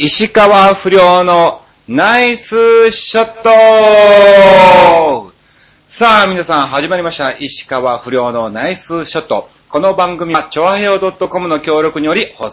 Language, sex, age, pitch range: Japanese, male, 30-49, 120-200 Hz